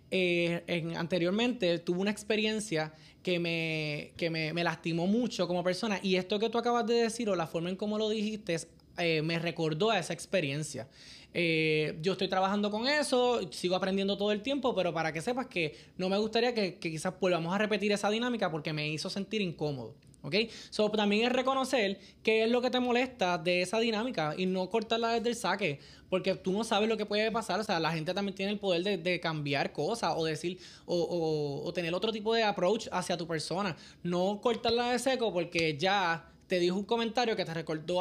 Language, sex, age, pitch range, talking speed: Spanish, male, 20-39, 170-220 Hz, 215 wpm